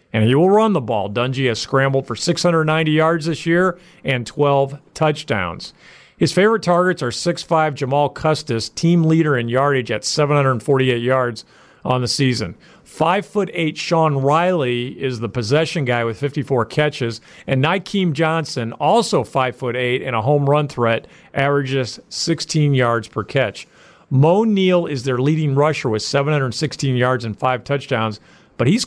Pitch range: 125-165 Hz